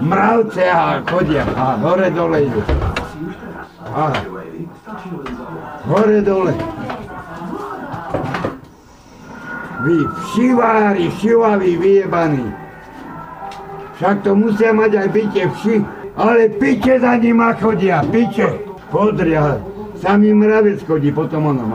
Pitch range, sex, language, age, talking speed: 155-205 Hz, male, Slovak, 60-79, 90 wpm